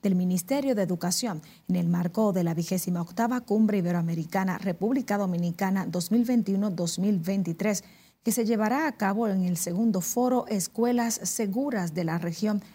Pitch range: 180-220 Hz